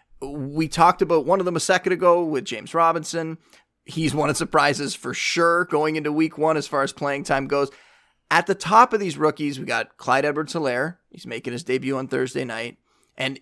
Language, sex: English, male